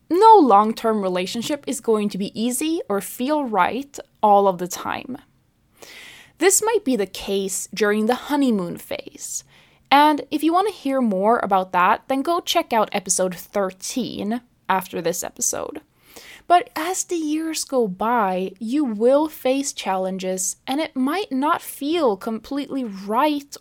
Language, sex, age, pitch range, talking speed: English, female, 20-39, 195-290 Hz, 150 wpm